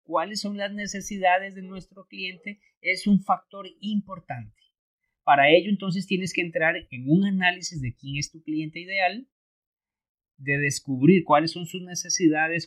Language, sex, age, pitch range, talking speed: Spanish, male, 30-49, 155-195 Hz, 150 wpm